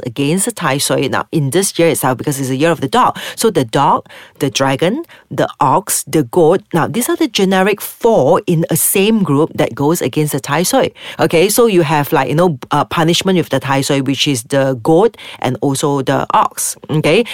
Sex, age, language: female, 40-59, English